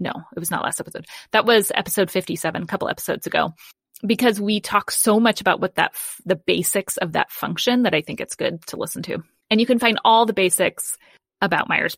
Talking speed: 225 wpm